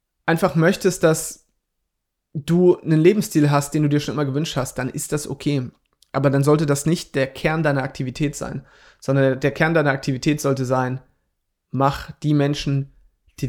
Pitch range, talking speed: 135-160 Hz, 175 wpm